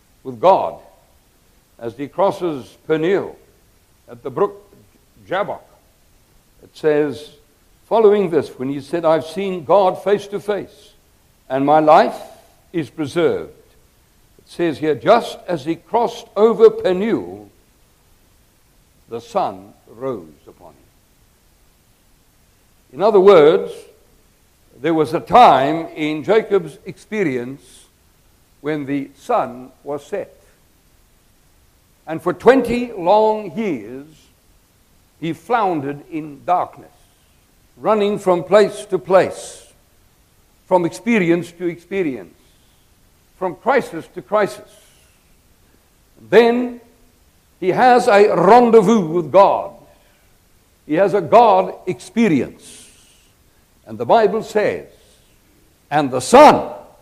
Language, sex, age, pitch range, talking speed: English, male, 60-79, 150-215 Hz, 105 wpm